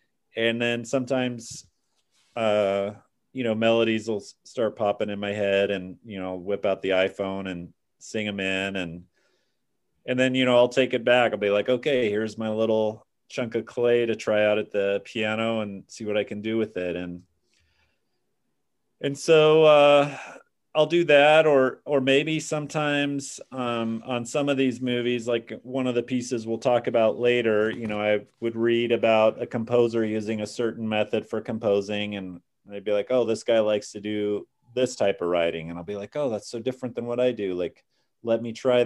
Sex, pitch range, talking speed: male, 105-125 Hz, 195 wpm